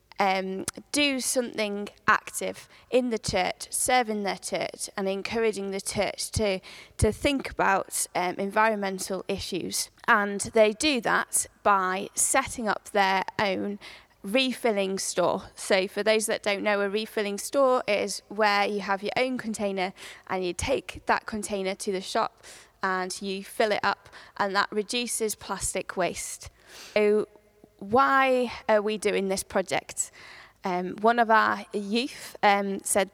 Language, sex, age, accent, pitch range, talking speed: English, female, 20-39, British, 195-225 Hz, 145 wpm